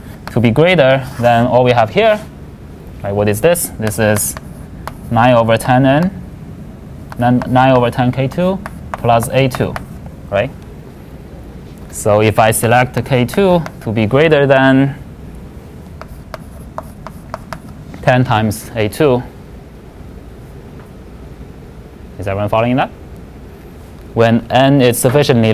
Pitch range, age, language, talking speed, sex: 100-125 Hz, 20-39, English, 100 wpm, male